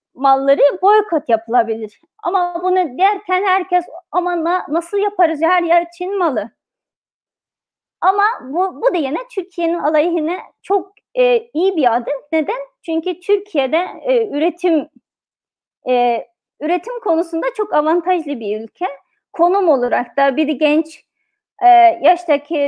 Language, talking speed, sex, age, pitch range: Turkish, 120 wpm, female, 30-49, 280-360 Hz